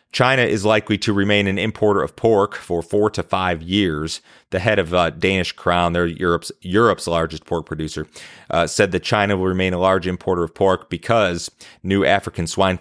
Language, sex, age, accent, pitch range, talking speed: English, male, 30-49, American, 85-95 Hz, 190 wpm